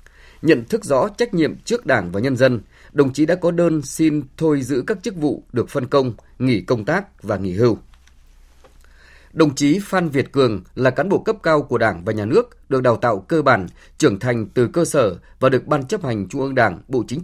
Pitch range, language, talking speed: 110-155 Hz, Vietnamese, 225 wpm